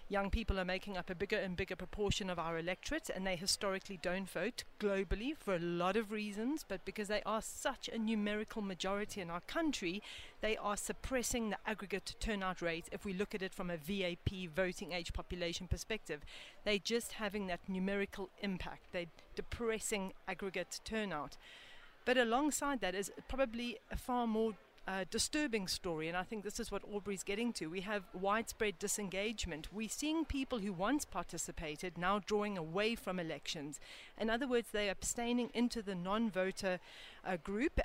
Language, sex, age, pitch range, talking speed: English, female, 40-59, 190-235 Hz, 175 wpm